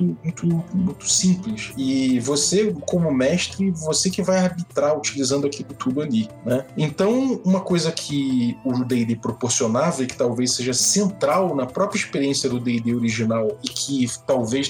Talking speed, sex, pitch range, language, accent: 150 wpm, male, 125-185 Hz, Portuguese, Brazilian